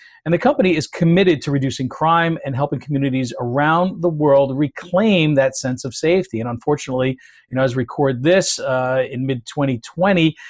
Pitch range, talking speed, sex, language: 130-160 Hz, 175 wpm, male, English